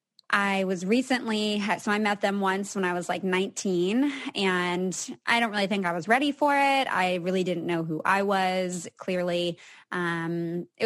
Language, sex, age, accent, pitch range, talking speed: English, female, 20-39, American, 185-225 Hz, 180 wpm